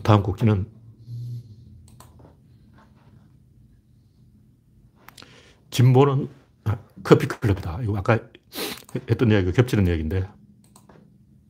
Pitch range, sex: 105-135 Hz, male